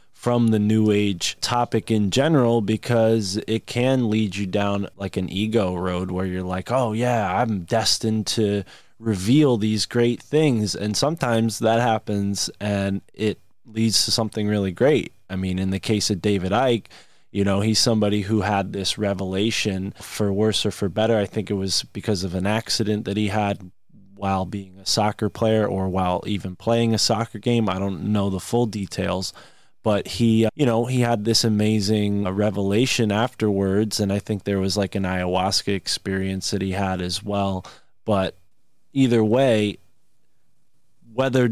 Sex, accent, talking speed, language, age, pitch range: male, American, 170 wpm, English, 20-39, 95-115 Hz